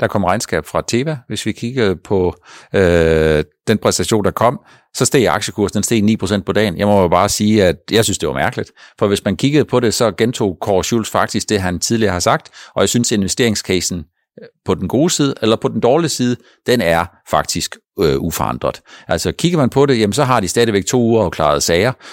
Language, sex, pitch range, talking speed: Danish, male, 85-115 Hz, 220 wpm